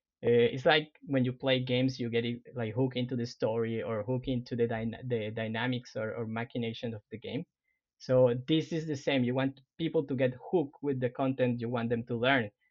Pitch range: 120-145 Hz